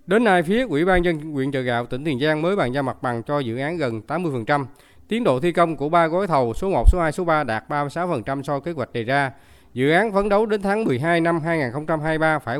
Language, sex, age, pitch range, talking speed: Vietnamese, male, 20-39, 130-185 Hz, 260 wpm